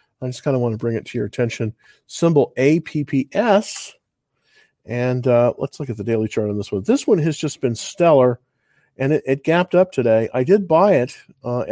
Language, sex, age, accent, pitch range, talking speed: English, male, 50-69, American, 120-155 Hz, 210 wpm